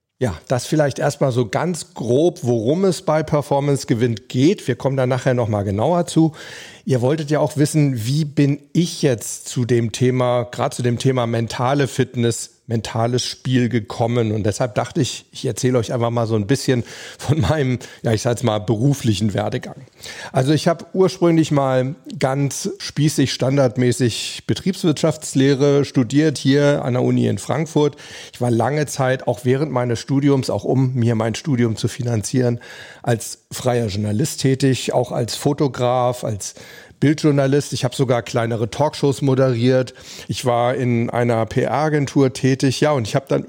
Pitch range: 120-145 Hz